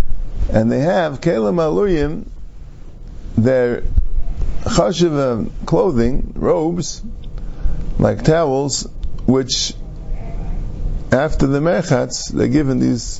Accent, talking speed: American, 80 wpm